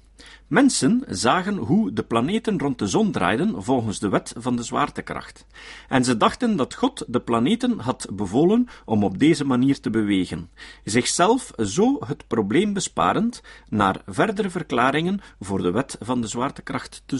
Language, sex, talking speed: Dutch, male, 155 wpm